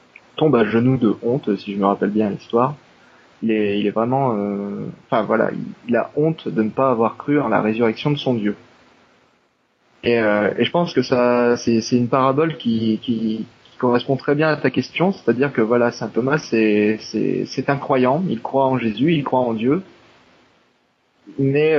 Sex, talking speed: male, 195 wpm